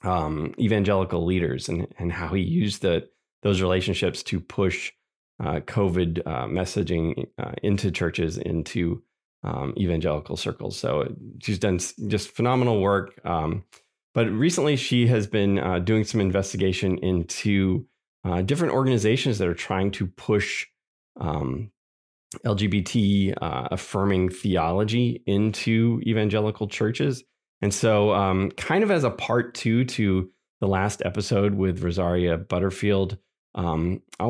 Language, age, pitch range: English, 20-39, 90-110 Hz